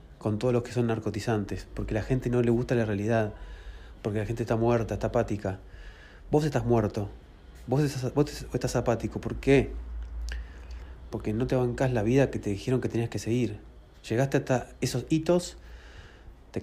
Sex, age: male, 30-49